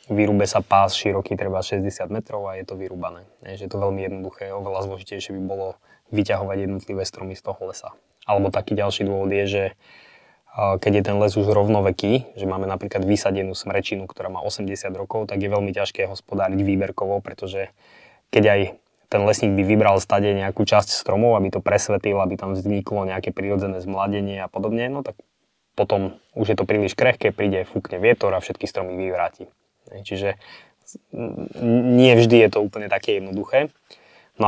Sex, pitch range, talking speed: male, 95-105 Hz, 170 wpm